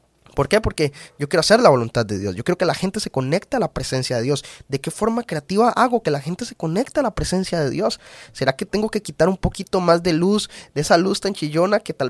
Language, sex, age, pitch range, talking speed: Spanish, male, 20-39, 145-200 Hz, 270 wpm